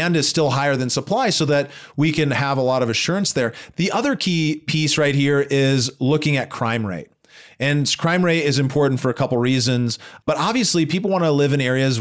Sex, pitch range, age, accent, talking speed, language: male, 120-150 Hz, 30-49, American, 220 wpm, English